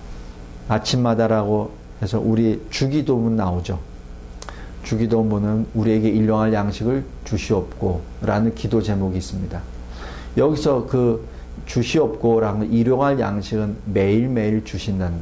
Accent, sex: native, male